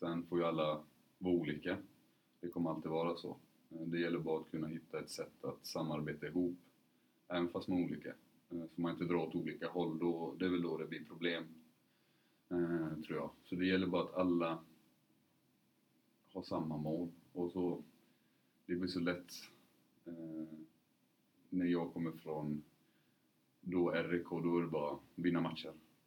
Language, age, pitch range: Swedish, 30-49, 80-90 Hz